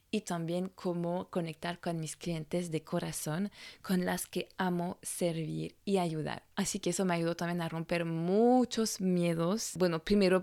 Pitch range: 175-210 Hz